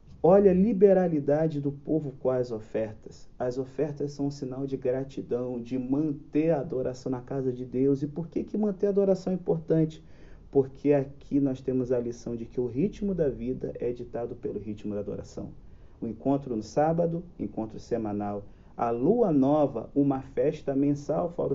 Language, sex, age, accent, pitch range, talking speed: Portuguese, male, 40-59, Brazilian, 115-145 Hz, 175 wpm